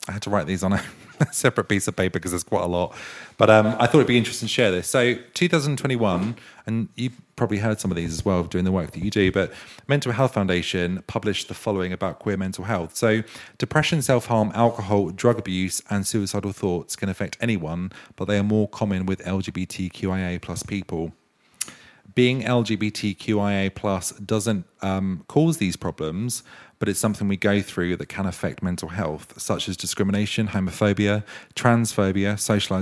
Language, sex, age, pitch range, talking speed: English, male, 40-59, 95-115 Hz, 180 wpm